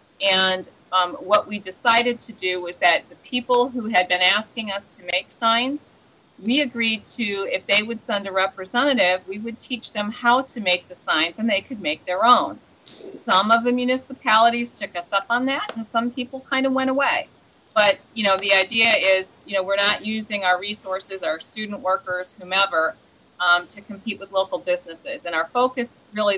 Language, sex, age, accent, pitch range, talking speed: English, female, 40-59, American, 185-230 Hz, 195 wpm